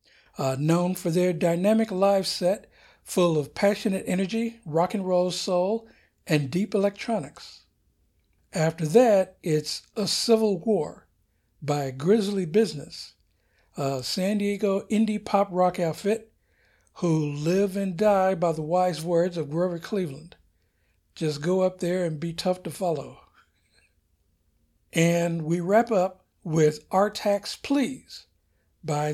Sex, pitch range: male, 155-200 Hz